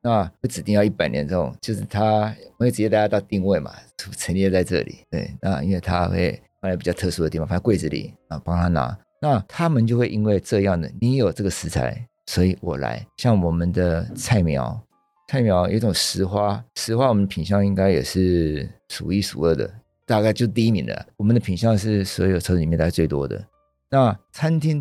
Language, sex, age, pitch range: Chinese, male, 50-69, 90-115 Hz